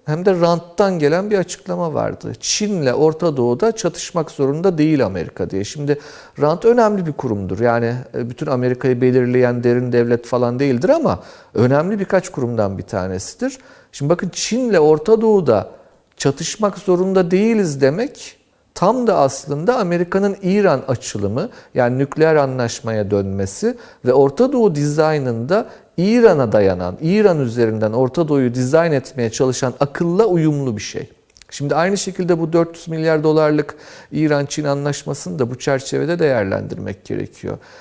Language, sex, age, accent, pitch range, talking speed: Turkish, male, 50-69, native, 125-195 Hz, 135 wpm